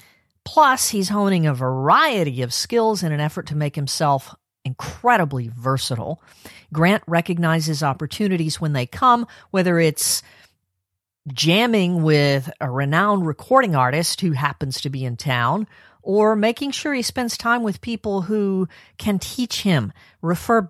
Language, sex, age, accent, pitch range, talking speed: English, female, 50-69, American, 135-195 Hz, 140 wpm